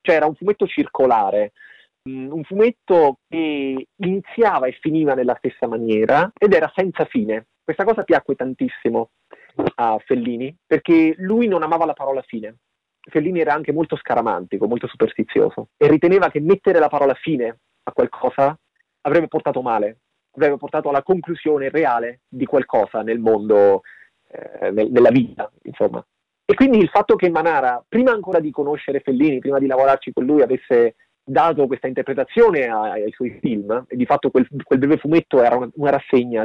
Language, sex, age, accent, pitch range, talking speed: Italian, male, 30-49, native, 125-195 Hz, 160 wpm